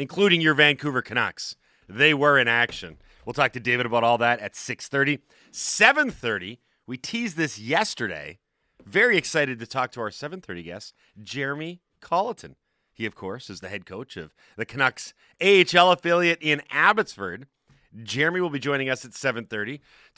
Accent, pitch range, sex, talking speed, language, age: American, 115-160 Hz, male, 160 wpm, English, 30-49